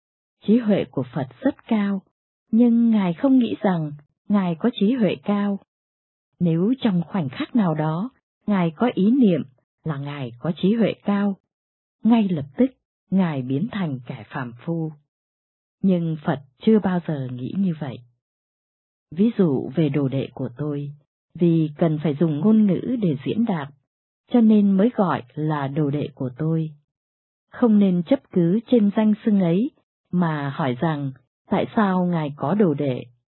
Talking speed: 165 wpm